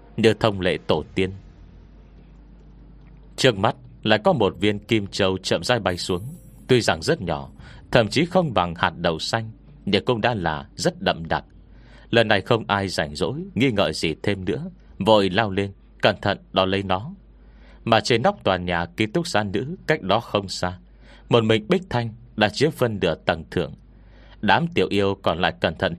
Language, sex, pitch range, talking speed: Vietnamese, male, 90-115 Hz, 190 wpm